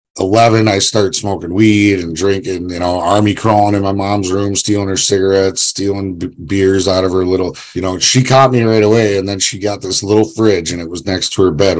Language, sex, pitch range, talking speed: English, male, 90-105 Hz, 235 wpm